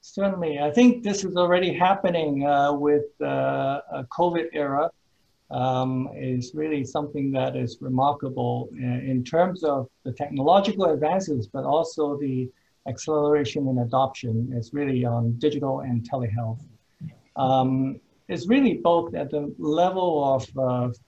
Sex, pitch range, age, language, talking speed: male, 120-150 Hz, 60-79, English, 135 wpm